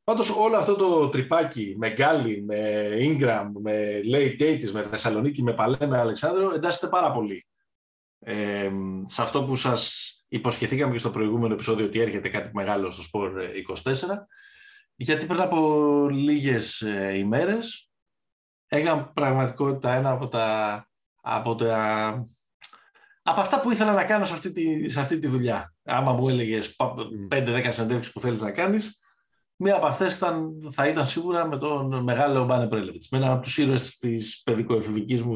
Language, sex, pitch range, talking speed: Greek, male, 110-145 Hz, 155 wpm